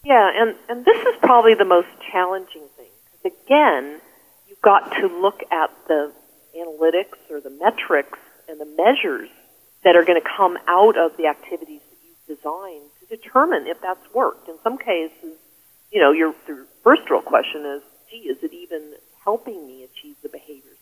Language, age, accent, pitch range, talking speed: English, 40-59, American, 155-225 Hz, 180 wpm